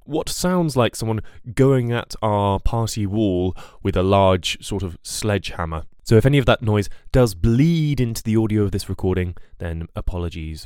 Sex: male